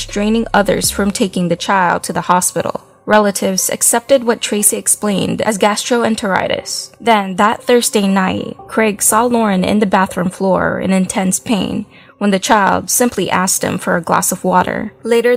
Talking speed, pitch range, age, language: 165 wpm, 190-225 Hz, 20-39, English